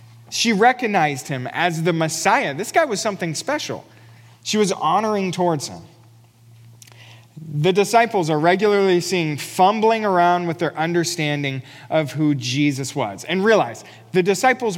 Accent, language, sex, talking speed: American, English, male, 140 wpm